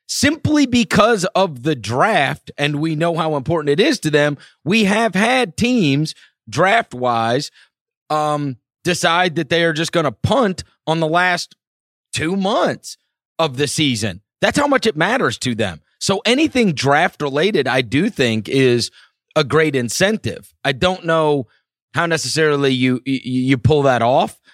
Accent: American